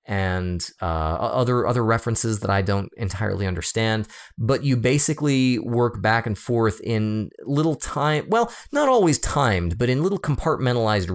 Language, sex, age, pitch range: English, male, 30-49, 100-135 Hz